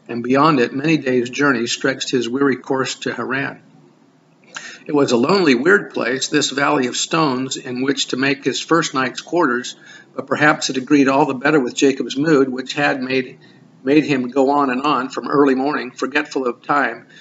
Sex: male